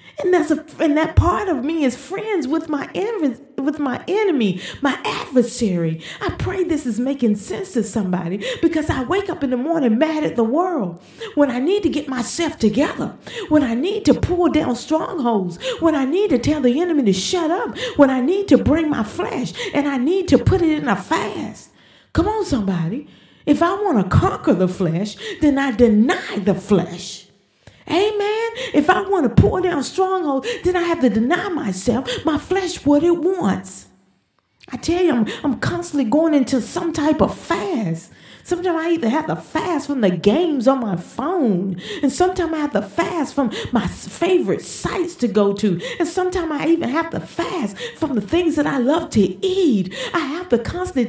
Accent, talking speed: American, 195 wpm